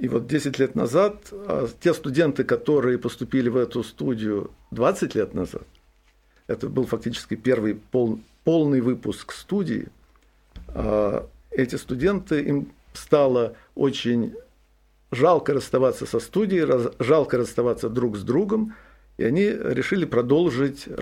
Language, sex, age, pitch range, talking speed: Russian, male, 50-69, 110-145 Hz, 115 wpm